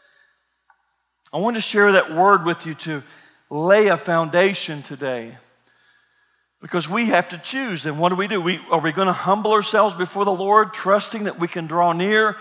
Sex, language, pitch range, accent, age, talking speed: male, English, 175-220 Hz, American, 50-69, 185 wpm